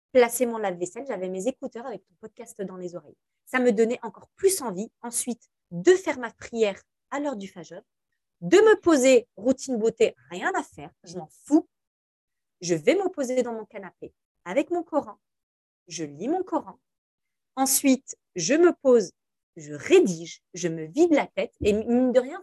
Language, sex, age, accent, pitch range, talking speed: French, female, 30-49, French, 195-285 Hz, 180 wpm